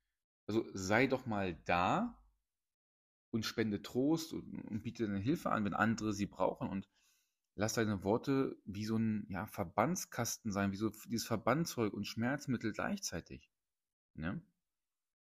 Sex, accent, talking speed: male, German, 140 wpm